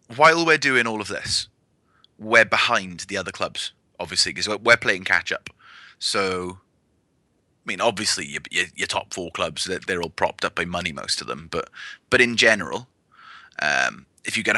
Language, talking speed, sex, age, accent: English, 180 wpm, male, 20-39, British